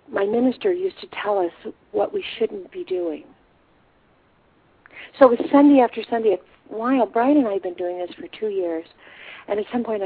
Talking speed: 195 wpm